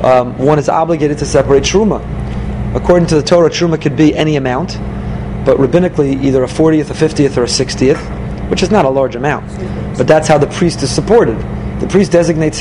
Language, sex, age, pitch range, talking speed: English, male, 30-49, 135-170 Hz, 200 wpm